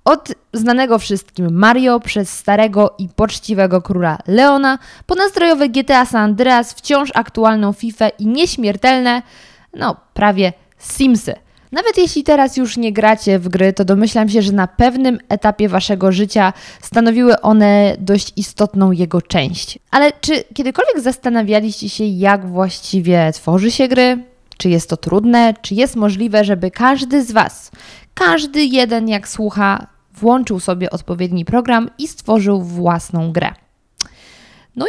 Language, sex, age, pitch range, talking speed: Polish, female, 20-39, 195-250 Hz, 135 wpm